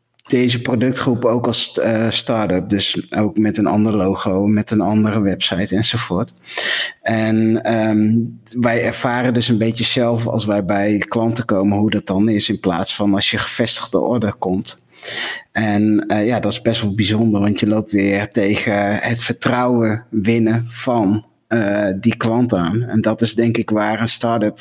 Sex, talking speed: male, 170 wpm